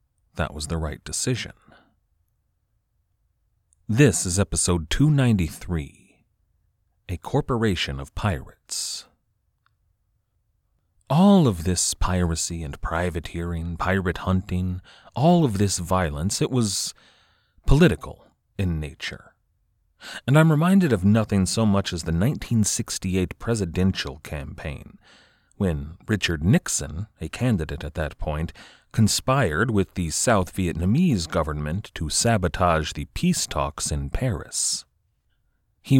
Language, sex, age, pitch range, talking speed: English, male, 30-49, 85-115 Hz, 105 wpm